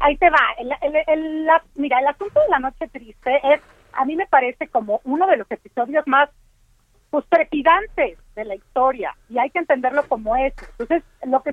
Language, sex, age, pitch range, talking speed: Spanish, female, 40-59, 235-310 Hz, 205 wpm